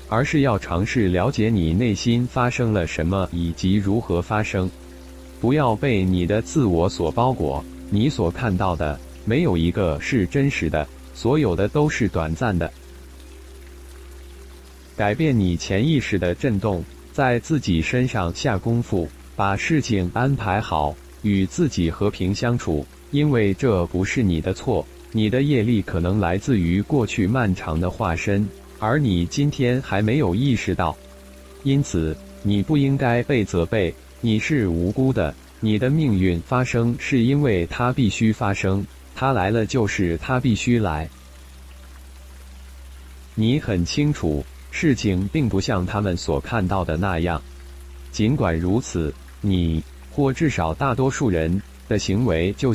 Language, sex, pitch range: Chinese, male, 80-120 Hz